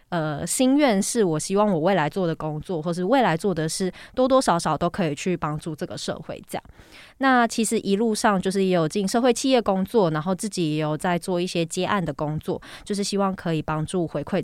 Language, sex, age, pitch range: Chinese, female, 20-39, 165-205 Hz